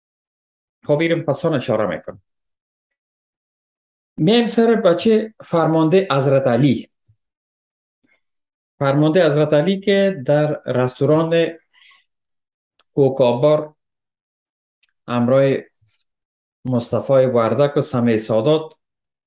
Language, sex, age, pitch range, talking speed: Persian, male, 50-69, 120-165 Hz, 70 wpm